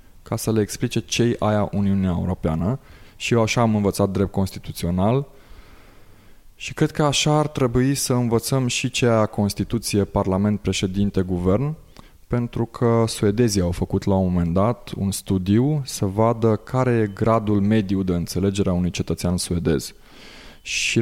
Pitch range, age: 95-120 Hz, 20-39